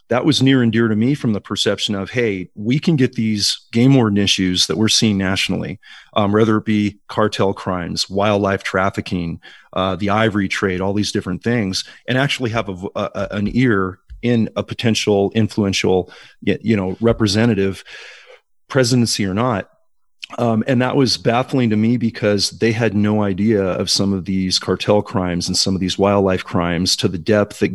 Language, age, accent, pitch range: English, 40-59, American, 95-115 Hz